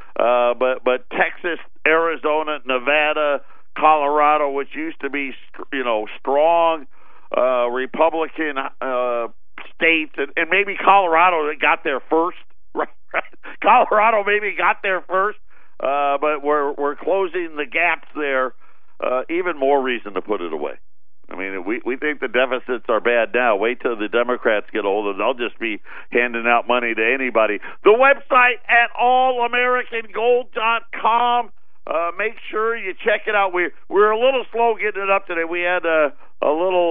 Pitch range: 140-200 Hz